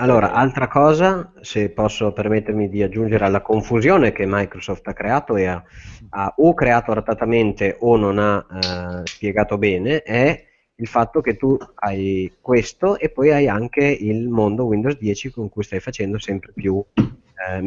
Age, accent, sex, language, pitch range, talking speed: 30-49, native, male, Italian, 95-120 Hz, 165 wpm